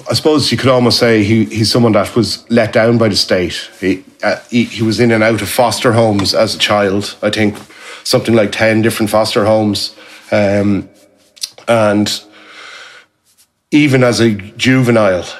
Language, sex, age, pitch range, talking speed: English, male, 30-49, 105-115 Hz, 170 wpm